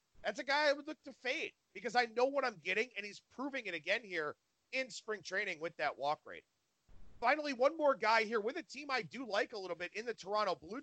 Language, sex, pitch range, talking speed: English, male, 185-250 Hz, 250 wpm